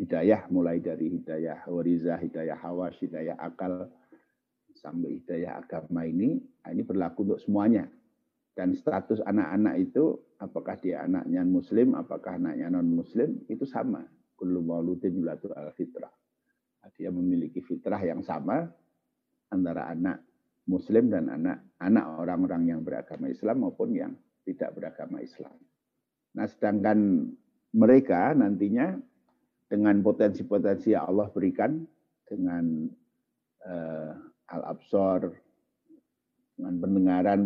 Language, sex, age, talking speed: Indonesian, male, 50-69, 100 wpm